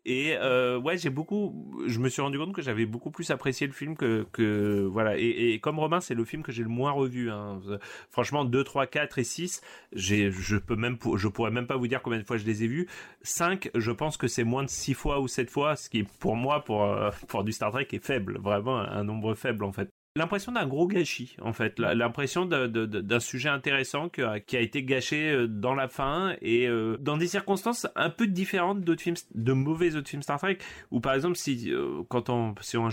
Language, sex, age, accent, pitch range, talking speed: French, male, 30-49, French, 115-155 Hz, 230 wpm